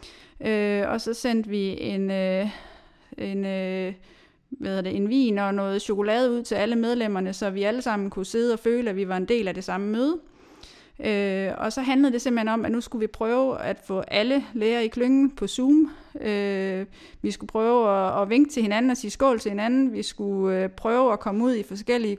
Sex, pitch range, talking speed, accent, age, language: female, 200-240 Hz, 215 wpm, Danish, 30-49, English